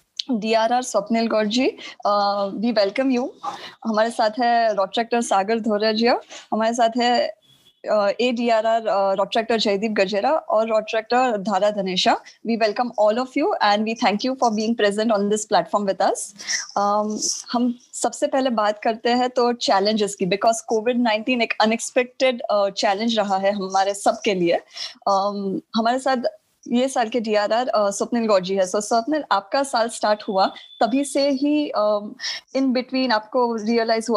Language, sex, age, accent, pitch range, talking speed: Hindi, female, 20-39, native, 205-245 Hz, 150 wpm